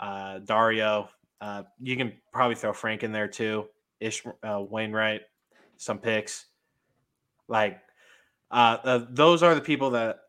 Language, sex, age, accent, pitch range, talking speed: English, male, 20-39, American, 105-120 Hz, 140 wpm